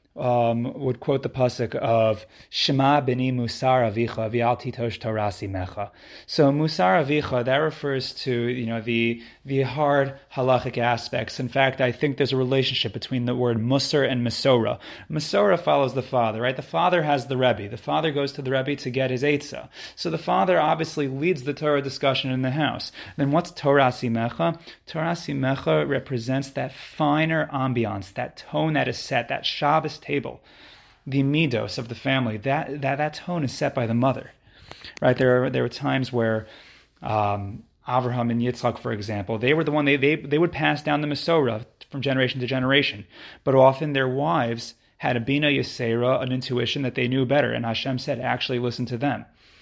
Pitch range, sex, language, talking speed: 120-145 Hz, male, English, 185 wpm